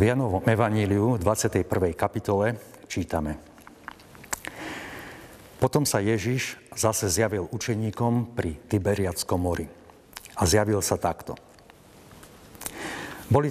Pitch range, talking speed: 95-120 Hz, 90 wpm